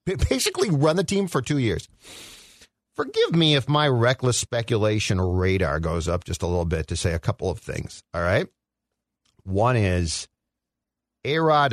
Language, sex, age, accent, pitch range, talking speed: English, male, 50-69, American, 90-130 Hz, 160 wpm